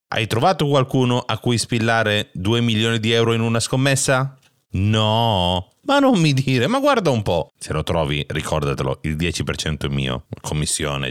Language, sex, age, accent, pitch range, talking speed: Italian, male, 30-49, native, 85-130 Hz, 165 wpm